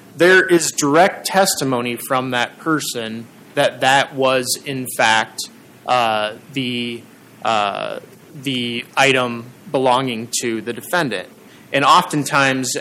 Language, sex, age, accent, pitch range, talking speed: English, male, 30-49, American, 130-155 Hz, 110 wpm